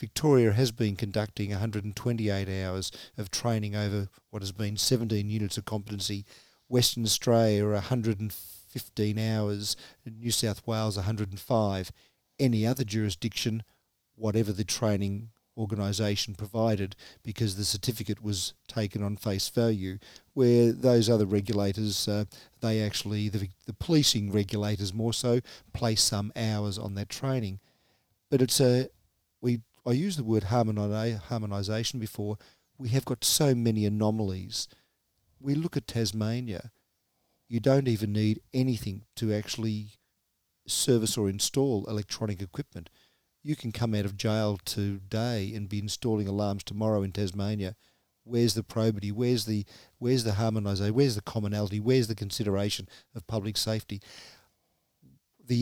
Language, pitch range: English, 105-115 Hz